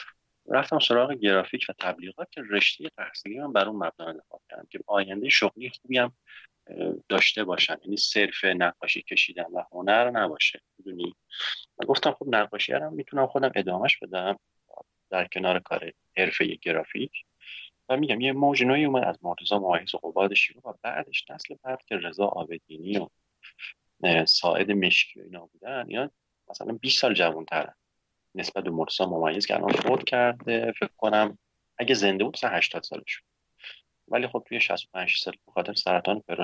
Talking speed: 140 wpm